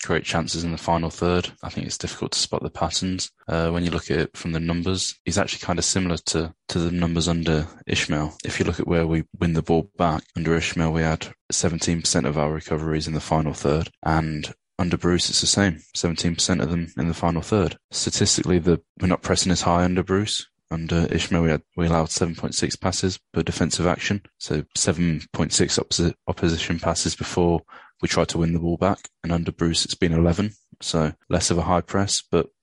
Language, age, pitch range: English, 20-39, 80-90 Hz